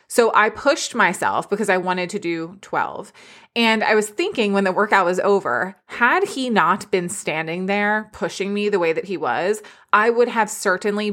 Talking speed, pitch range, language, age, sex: 195 wpm, 180-225 Hz, English, 20-39, female